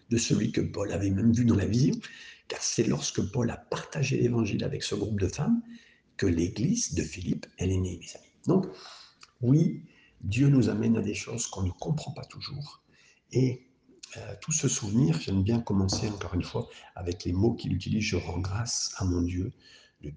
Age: 60-79